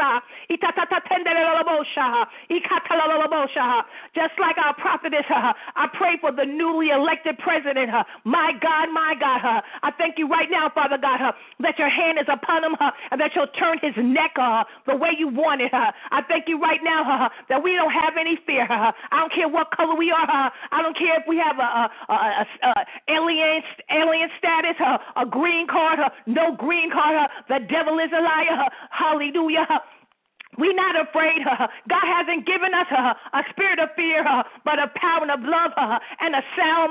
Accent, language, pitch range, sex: American, English, 290-335 Hz, female